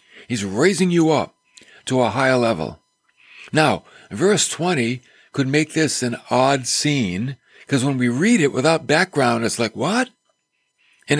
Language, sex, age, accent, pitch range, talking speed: English, male, 60-79, American, 115-155 Hz, 150 wpm